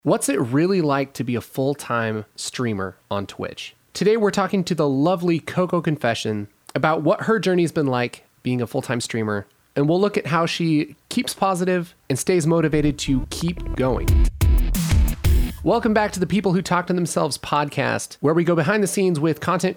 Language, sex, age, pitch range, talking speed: English, male, 30-49, 135-185 Hz, 190 wpm